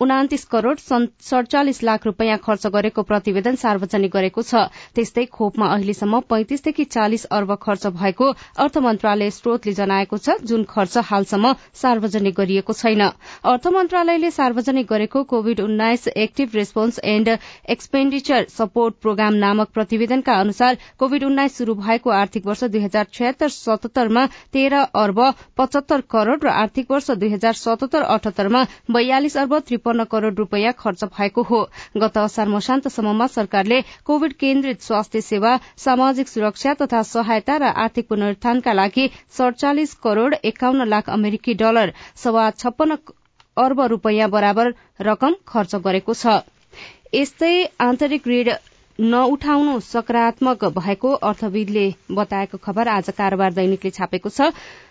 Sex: female